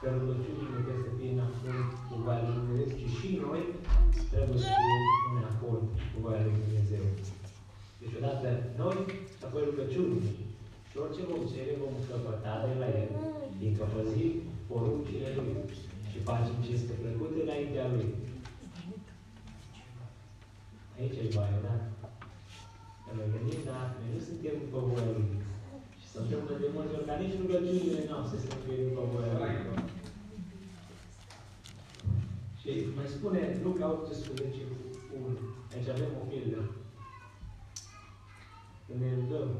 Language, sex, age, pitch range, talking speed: Romanian, male, 30-49, 105-130 Hz, 130 wpm